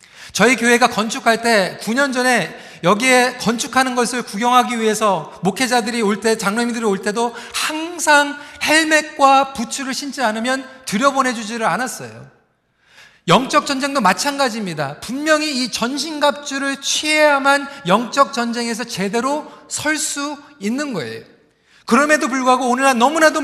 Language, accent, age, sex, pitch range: Korean, native, 40-59, male, 230-275 Hz